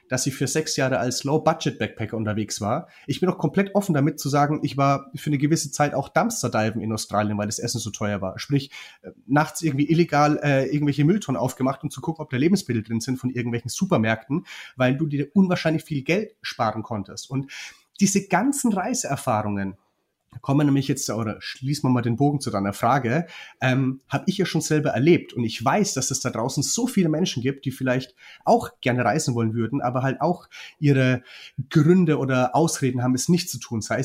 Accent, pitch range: German, 120-155 Hz